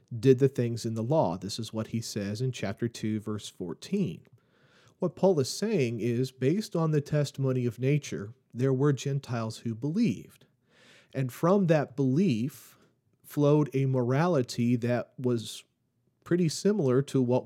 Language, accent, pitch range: English, American, 115-140 Hz